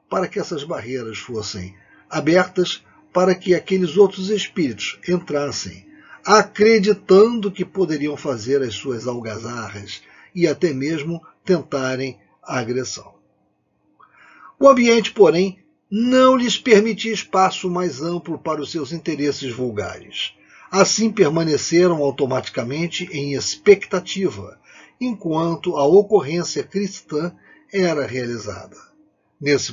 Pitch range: 140-190 Hz